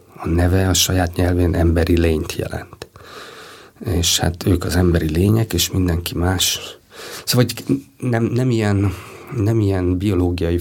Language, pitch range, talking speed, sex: Hungarian, 90-105 Hz, 140 wpm, male